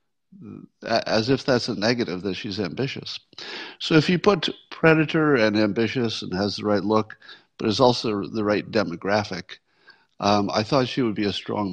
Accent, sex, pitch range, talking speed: American, male, 105-135 Hz, 175 wpm